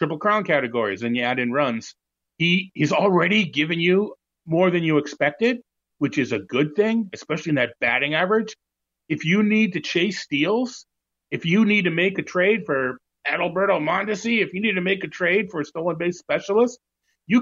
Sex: male